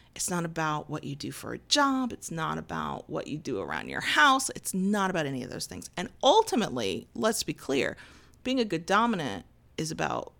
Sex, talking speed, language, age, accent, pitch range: female, 210 wpm, English, 40-59, American, 170-255 Hz